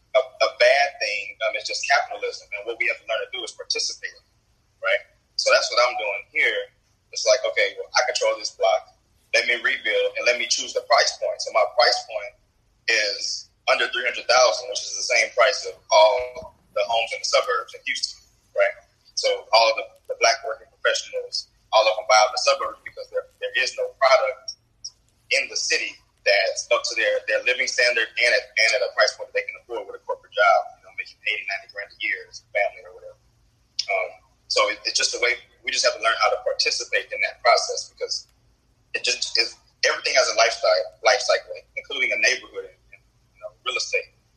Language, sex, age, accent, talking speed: English, male, 30-49, American, 215 wpm